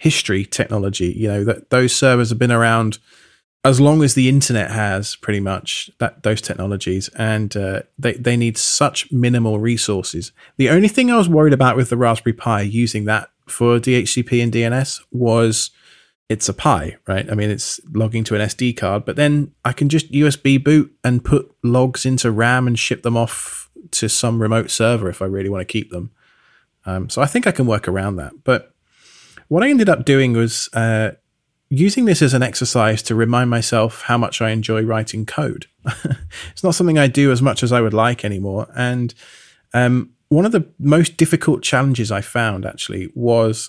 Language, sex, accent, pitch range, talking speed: English, male, British, 110-135 Hz, 195 wpm